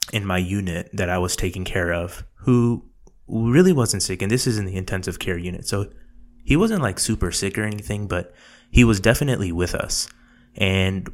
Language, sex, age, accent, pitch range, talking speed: English, male, 20-39, American, 90-110 Hz, 195 wpm